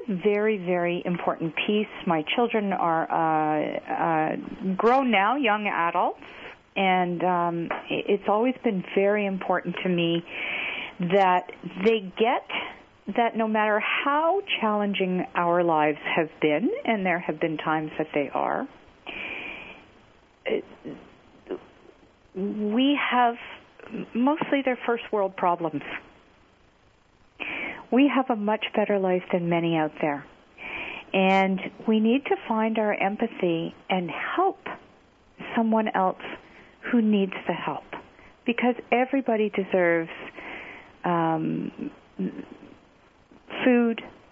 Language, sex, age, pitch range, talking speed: English, female, 50-69, 170-230 Hz, 105 wpm